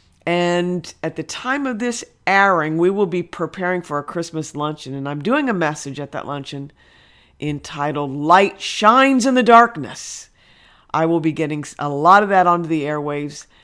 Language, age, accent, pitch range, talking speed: English, 50-69, American, 170-235 Hz, 175 wpm